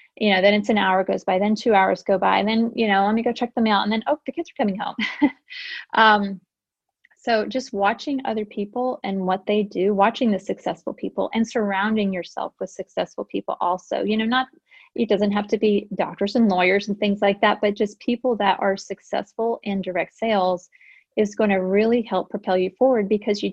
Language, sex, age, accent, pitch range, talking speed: English, female, 30-49, American, 195-230 Hz, 220 wpm